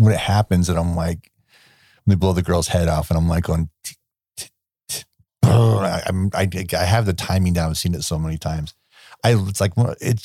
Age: 40-59